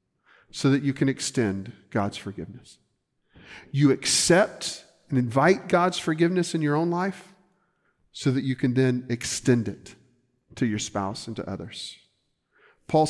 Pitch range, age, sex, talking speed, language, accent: 125-185 Hz, 50-69, male, 140 wpm, English, American